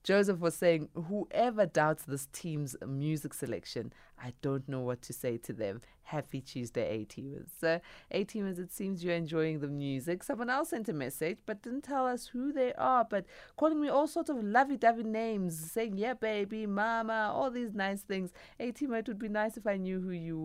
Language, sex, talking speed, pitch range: English, female, 195 wpm, 125-185 Hz